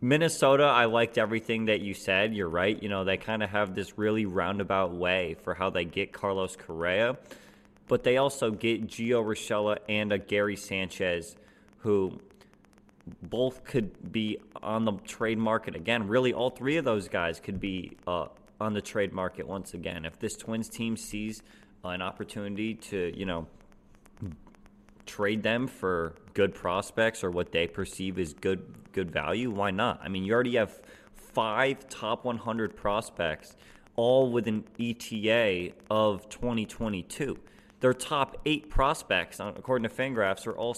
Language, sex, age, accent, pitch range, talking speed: English, male, 20-39, American, 100-120 Hz, 160 wpm